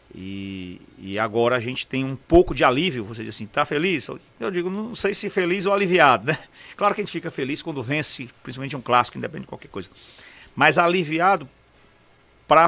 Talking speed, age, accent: 200 wpm, 40-59, Brazilian